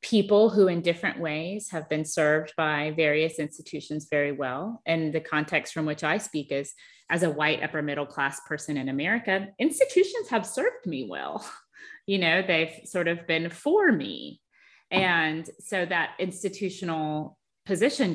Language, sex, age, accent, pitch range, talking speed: English, female, 30-49, American, 155-220 Hz, 160 wpm